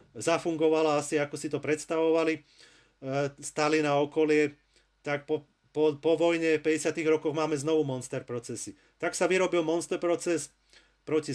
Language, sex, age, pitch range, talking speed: Slovak, male, 30-49, 140-165 Hz, 135 wpm